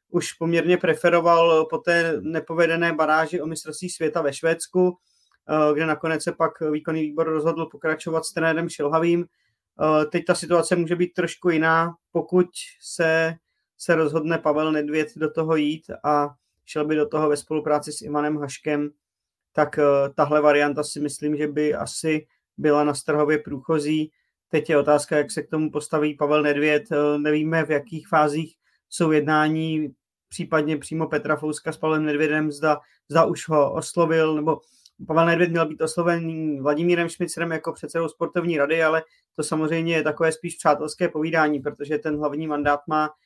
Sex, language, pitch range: male, Czech, 150-165 Hz